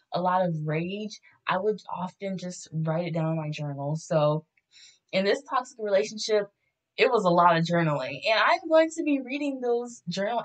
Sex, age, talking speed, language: female, 10-29, 190 wpm, English